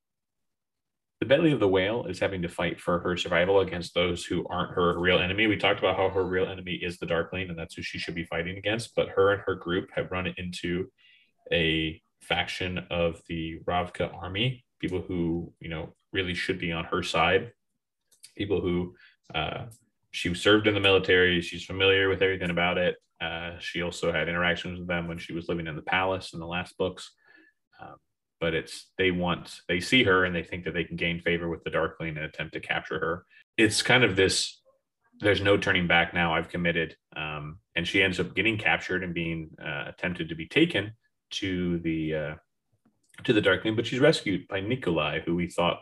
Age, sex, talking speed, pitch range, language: 30-49, male, 205 wpm, 85-100 Hz, English